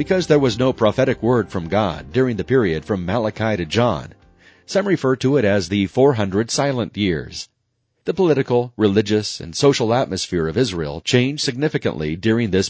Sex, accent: male, American